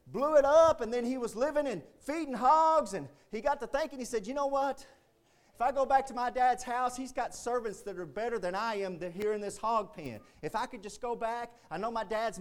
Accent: American